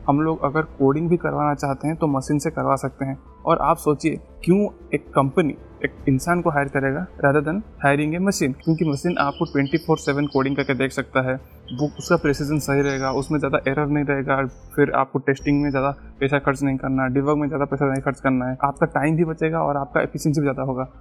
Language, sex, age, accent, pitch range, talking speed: Hindi, male, 20-39, native, 140-165 Hz, 205 wpm